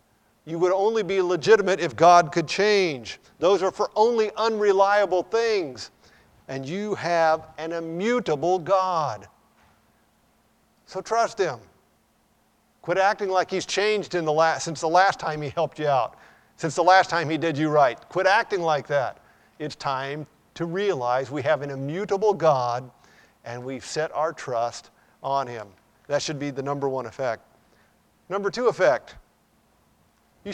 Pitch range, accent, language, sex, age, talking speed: 145-195 Hz, American, English, male, 50-69, 155 wpm